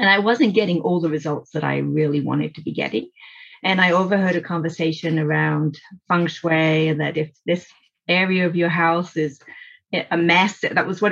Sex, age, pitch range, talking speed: female, 30-49, 170-220 Hz, 195 wpm